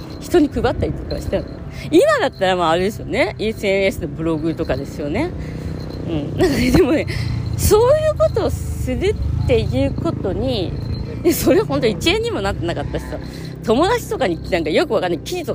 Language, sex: Japanese, female